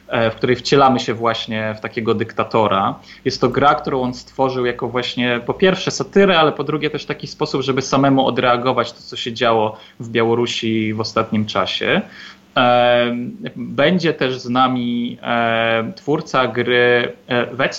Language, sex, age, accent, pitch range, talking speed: Polish, male, 20-39, native, 115-135 Hz, 150 wpm